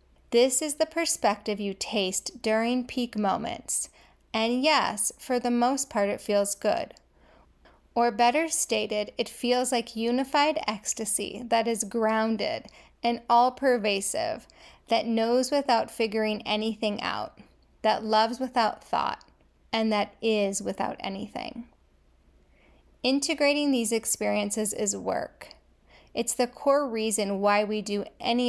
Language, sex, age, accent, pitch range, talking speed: English, female, 10-29, American, 210-250 Hz, 125 wpm